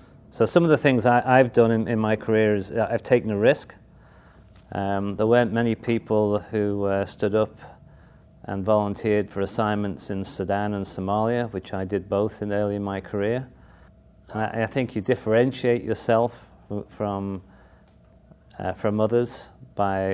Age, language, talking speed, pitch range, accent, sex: 40-59, English, 165 wpm, 95-115 Hz, British, male